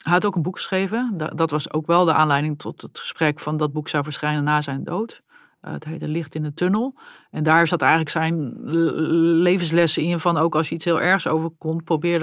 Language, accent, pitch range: Dutch, Dutch, 150-165 Hz